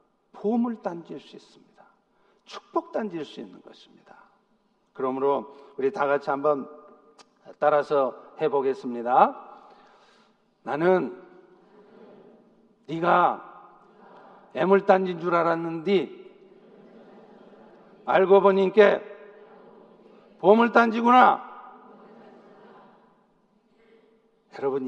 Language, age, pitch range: Korean, 50-69, 170-205 Hz